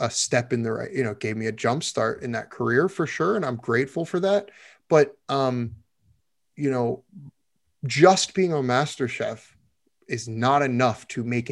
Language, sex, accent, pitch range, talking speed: English, male, American, 110-135 Hz, 190 wpm